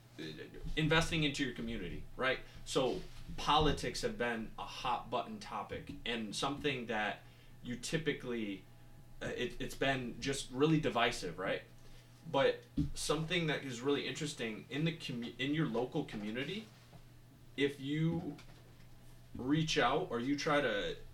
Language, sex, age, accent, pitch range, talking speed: English, male, 20-39, American, 110-140 Hz, 135 wpm